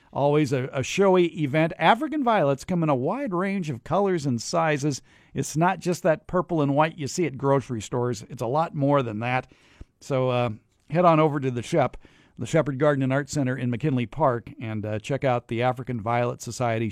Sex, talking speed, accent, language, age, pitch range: male, 210 wpm, American, English, 50-69, 130-165 Hz